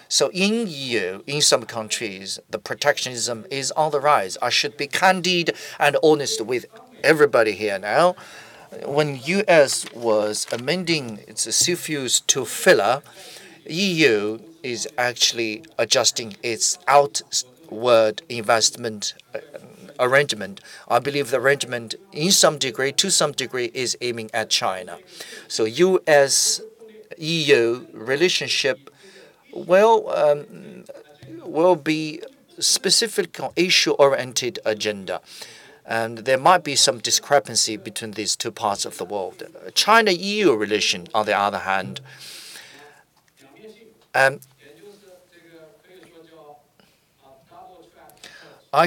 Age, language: 40-59, English